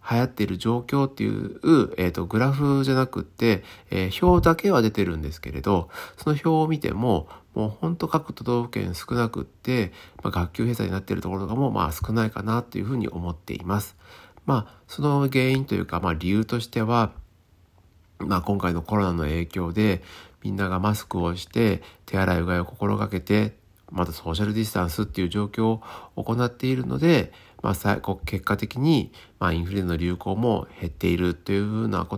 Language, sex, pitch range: Japanese, male, 90-115 Hz